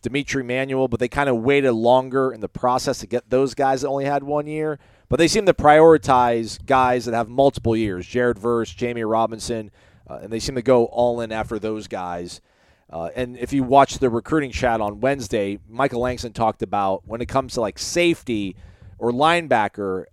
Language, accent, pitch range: English, American, 105-135 Hz